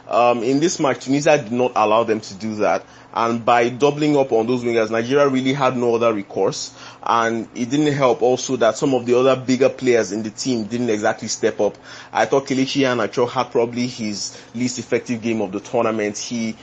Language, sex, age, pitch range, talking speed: English, male, 30-49, 110-130 Hz, 210 wpm